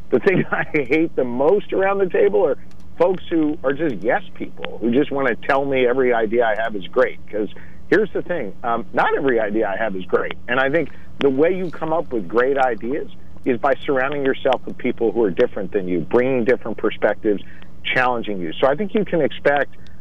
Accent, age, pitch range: American, 50-69, 110-155 Hz